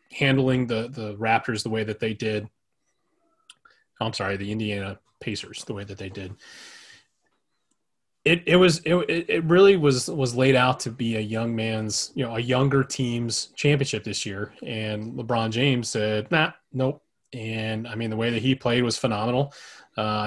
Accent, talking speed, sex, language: American, 175 wpm, male, English